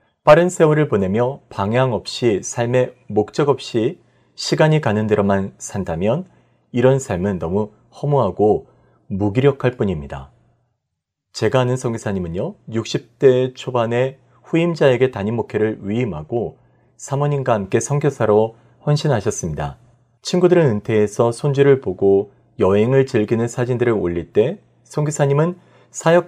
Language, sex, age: Korean, male, 40-59